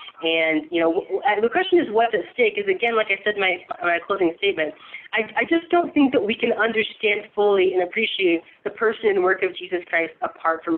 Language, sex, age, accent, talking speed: English, female, 30-49, American, 225 wpm